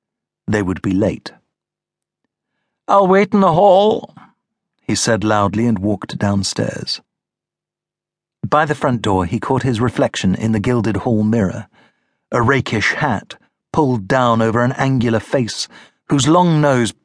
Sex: male